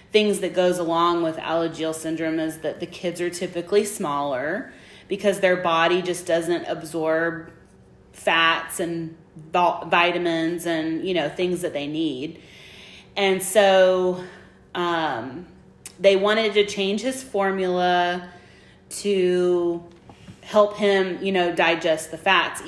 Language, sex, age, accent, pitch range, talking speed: English, female, 30-49, American, 170-195 Hz, 125 wpm